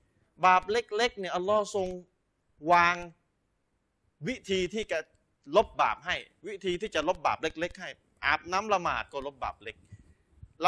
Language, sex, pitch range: Thai, male, 145-205 Hz